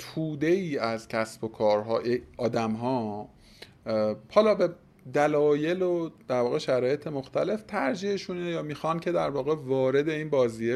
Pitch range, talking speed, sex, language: 115-170 Hz, 145 wpm, male, Persian